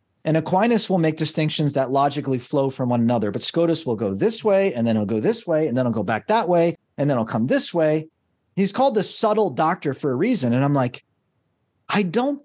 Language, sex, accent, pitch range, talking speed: English, male, American, 120-180 Hz, 235 wpm